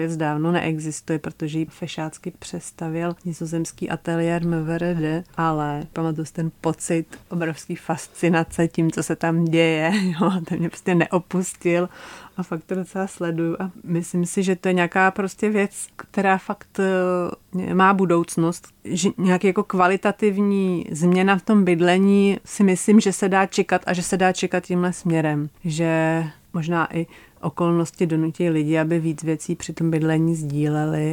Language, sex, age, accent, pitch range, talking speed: Czech, female, 30-49, native, 155-175 Hz, 150 wpm